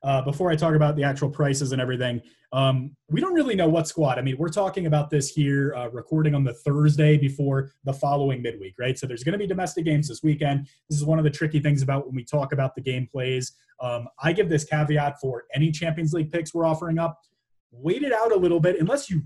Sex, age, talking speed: male, 20-39, 245 wpm